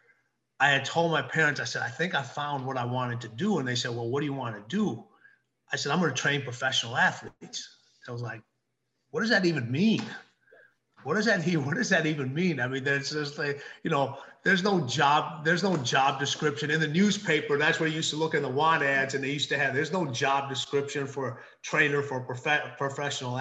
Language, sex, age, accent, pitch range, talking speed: English, male, 30-49, American, 125-155 Hz, 240 wpm